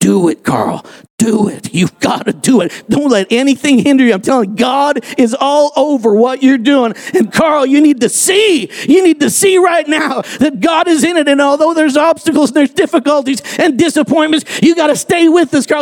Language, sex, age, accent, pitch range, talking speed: English, male, 50-69, American, 220-300 Hz, 220 wpm